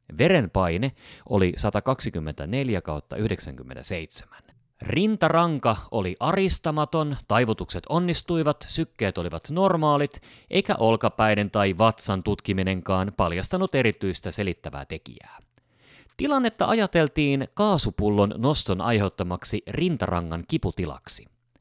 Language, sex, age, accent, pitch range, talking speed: Finnish, male, 30-49, native, 90-135 Hz, 80 wpm